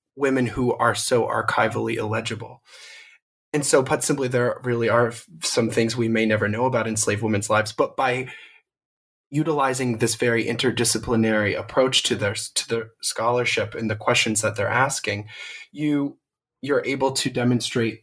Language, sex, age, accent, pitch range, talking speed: English, male, 20-39, American, 110-130 Hz, 155 wpm